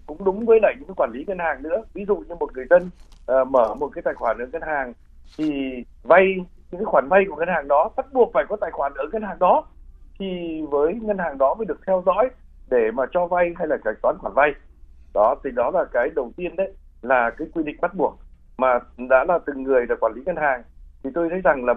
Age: 60-79